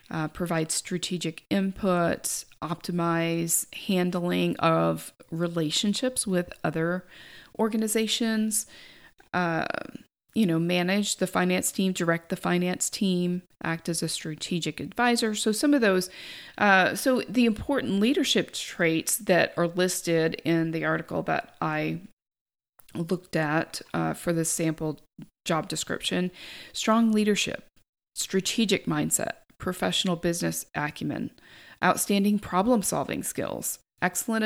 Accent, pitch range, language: American, 165-205 Hz, English